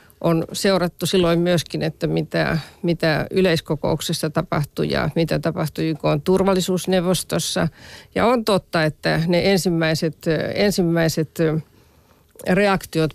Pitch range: 160-185 Hz